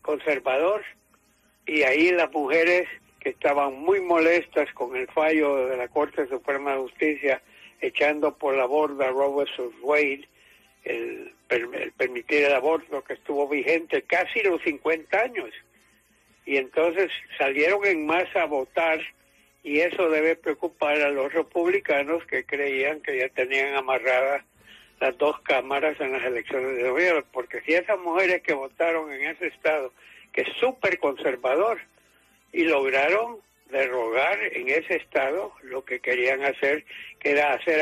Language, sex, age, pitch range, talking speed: English, male, 60-79, 140-175 Hz, 145 wpm